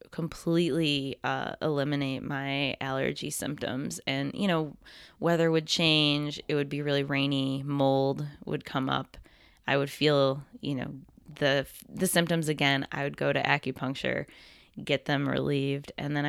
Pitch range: 135-150 Hz